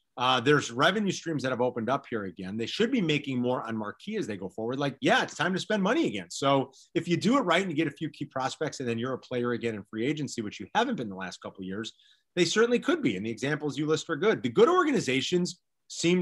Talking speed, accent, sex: 280 wpm, American, male